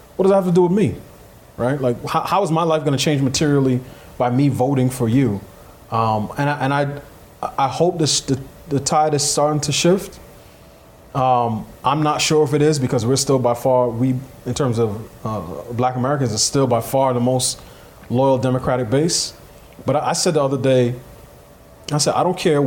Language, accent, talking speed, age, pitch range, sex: English, American, 210 wpm, 30-49, 120-145 Hz, male